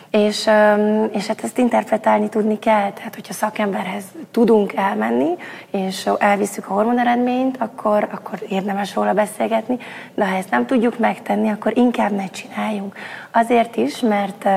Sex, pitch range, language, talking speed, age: female, 200-230 Hz, Hungarian, 140 wpm, 20-39